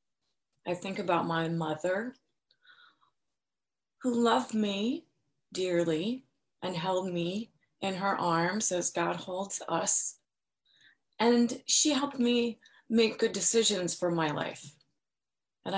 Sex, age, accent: female, 30-49, American